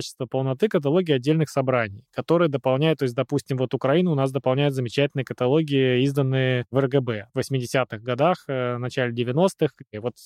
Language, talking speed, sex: Russian, 165 wpm, male